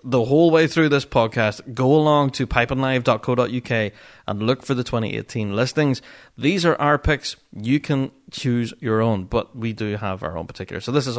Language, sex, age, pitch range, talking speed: English, male, 30-49, 115-150 Hz, 190 wpm